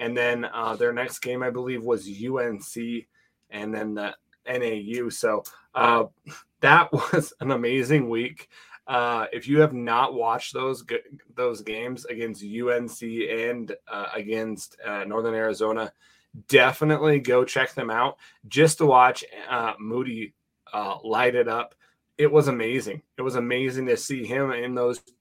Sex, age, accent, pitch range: male, 20-39, American, 110-130 Hz